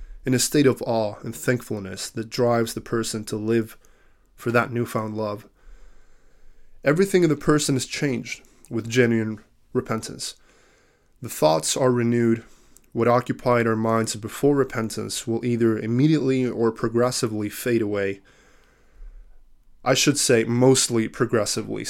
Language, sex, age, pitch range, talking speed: English, male, 20-39, 110-130 Hz, 130 wpm